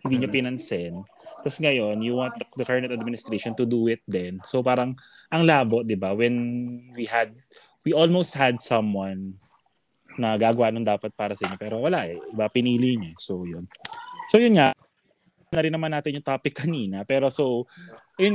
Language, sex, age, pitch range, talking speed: Filipino, male, 20-39, 110-155 Hz, 175 wpm